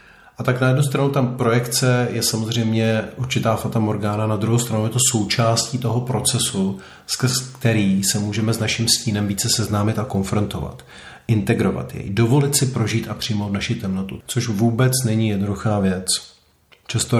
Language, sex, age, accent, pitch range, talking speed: Czech, male, 40-59, native, 100-120 Hz, 160 wpm